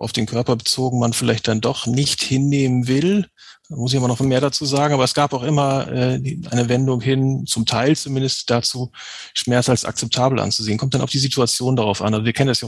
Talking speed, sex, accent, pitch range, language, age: 225 wpm, male, German, 120-140 Hz, German, 40-59